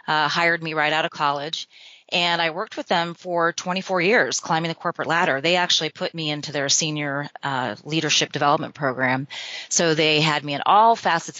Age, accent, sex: 30-49, American, female